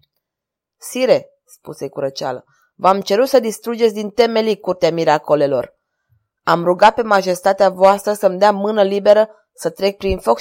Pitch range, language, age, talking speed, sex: 180-220 Hz, Romanian, 20-39, 140 wpm, female